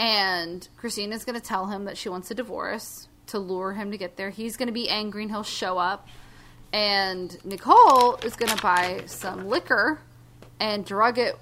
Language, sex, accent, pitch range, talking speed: English, female, American, 185-245 Hz, 195 wpm